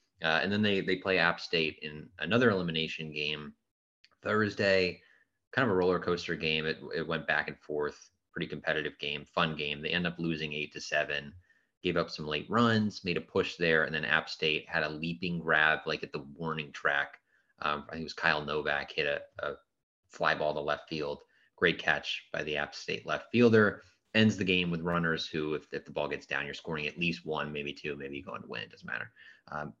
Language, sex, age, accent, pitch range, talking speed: English, male, 30-49, American, 75-95 Hz, 215 wpm